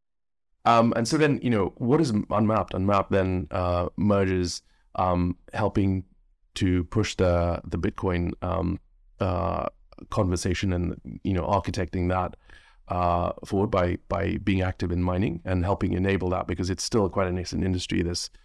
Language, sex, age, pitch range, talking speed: English, male, 30-49, 90-100 Hz, 155 wpm